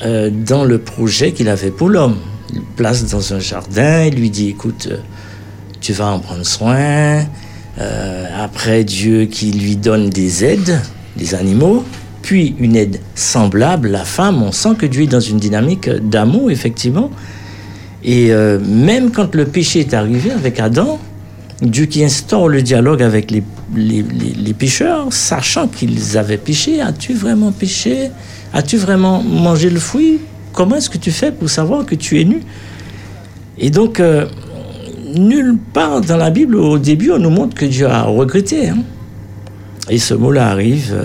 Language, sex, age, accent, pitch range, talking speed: French, male, 60-79, French, 105-150 Hz, 165 wpm